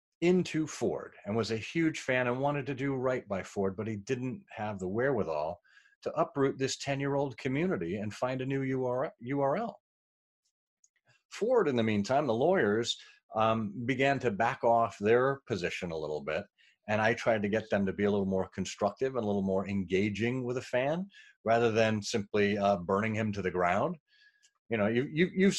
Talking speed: 185 wpm